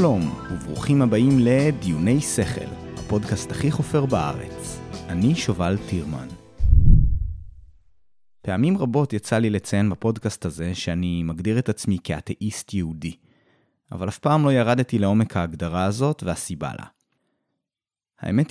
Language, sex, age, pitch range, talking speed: Hebrew, male, 30-49, 90-125 Hz, 115 wpm